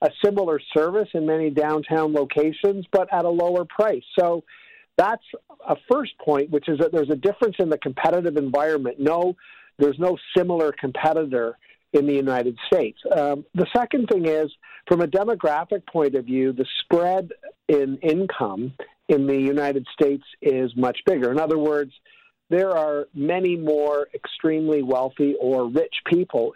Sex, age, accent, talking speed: male, 50-69, American, 160 wpm